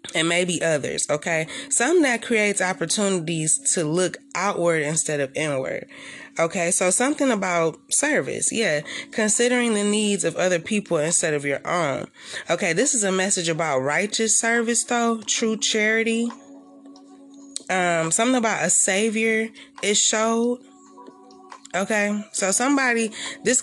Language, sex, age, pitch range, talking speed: English, female, 20-39, 165-235 Hz, 130 wpm